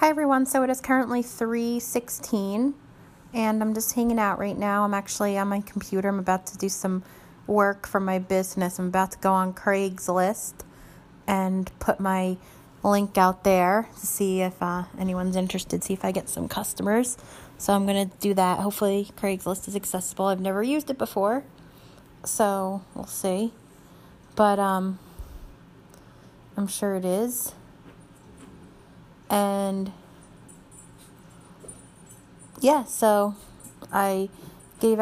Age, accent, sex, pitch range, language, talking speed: 30-49, American, female, 185-210 Hz, English, 135 wpm